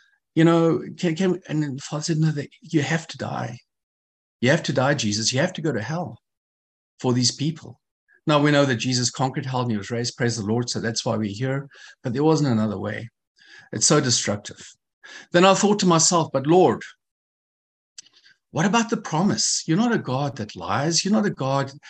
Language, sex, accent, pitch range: English, male, South African, 125-165 Hz